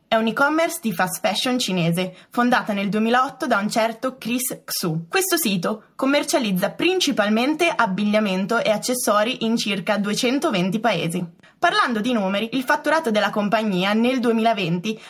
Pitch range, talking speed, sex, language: 190-245 Hz, 140 wpm, female, Italian